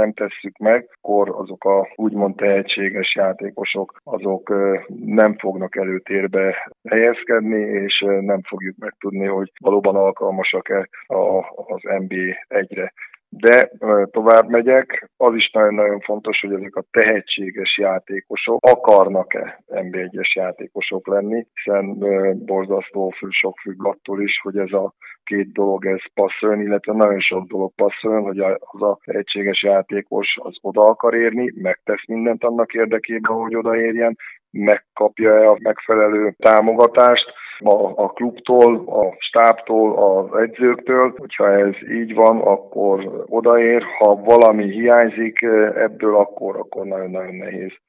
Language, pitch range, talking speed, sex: Hungarian, 95-110 Hz, 125 wpm, male